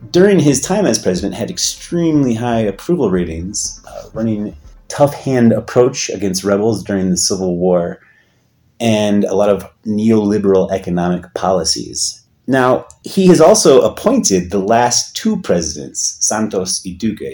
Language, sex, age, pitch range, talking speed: English, male, 30-49, 90-120 Hz, 135 wpm